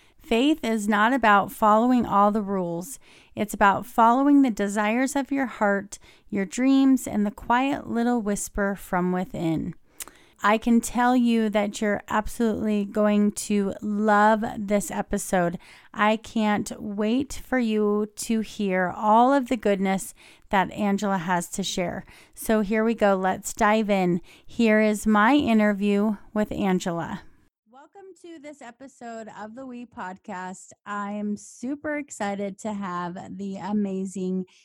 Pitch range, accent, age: 195-230 Hz, American, 30-49